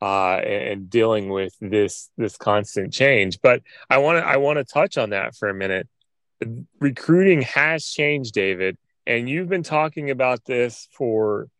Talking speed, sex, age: 155 wpm, male, 30-49